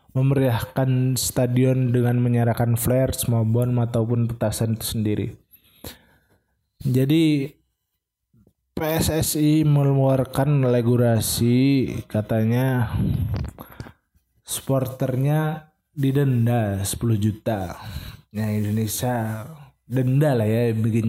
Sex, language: male, Indonesian